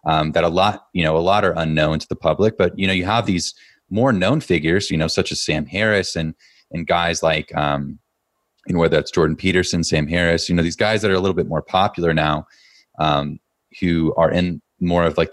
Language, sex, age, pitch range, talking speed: English, male, 30-49, 75-90 Hz, 230 wpm